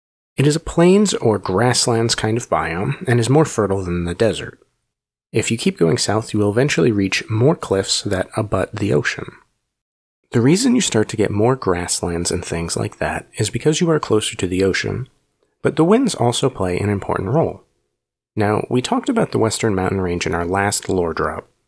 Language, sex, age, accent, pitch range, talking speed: English, male, 30-49, American, 95-145 Hz, 200 wpm